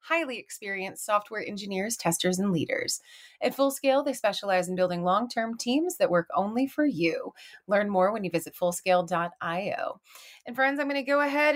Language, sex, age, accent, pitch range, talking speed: English, female, 30-49, American, 205-280 Hz, 170 wpm